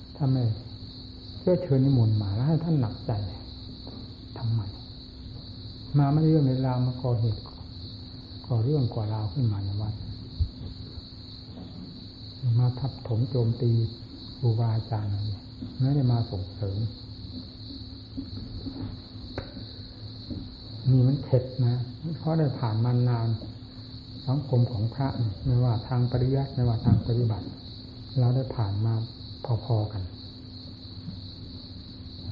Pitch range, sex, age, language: 100-125 Hz, male, 60-79, Thai